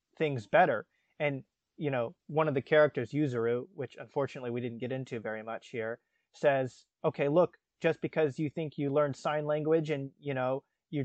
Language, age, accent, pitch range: English, 20-39, American, 135-160 Hz